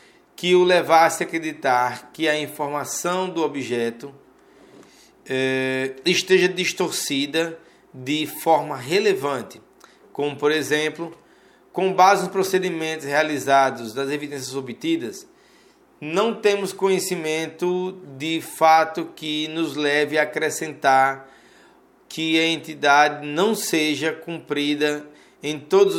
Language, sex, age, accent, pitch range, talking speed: Portuguese, male, 20-39, Brazilian, 150-205 Hz, 105 wpm